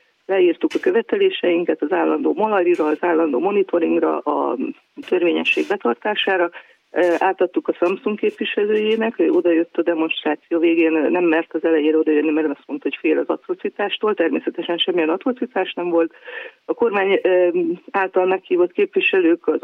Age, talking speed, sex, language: 30-49, 135 wpm, female, Hungarian